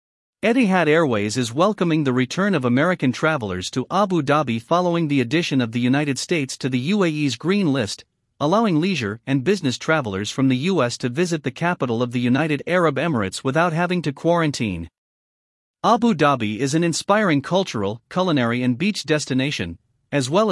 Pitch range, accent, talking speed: 125-170 Hz, American, 165 wpm